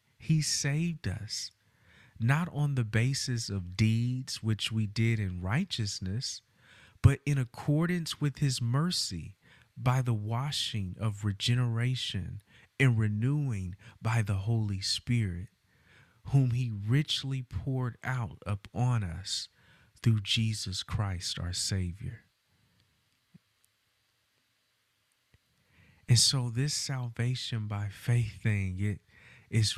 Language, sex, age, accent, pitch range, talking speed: English, male, 40-59, American, 105-135 Hz, 105 wpm